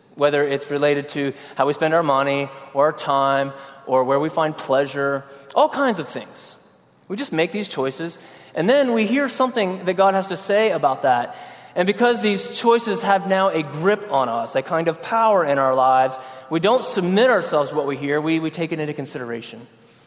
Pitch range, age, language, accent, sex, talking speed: 135-190 Hz, 20-39, English, American, male, 205 wpm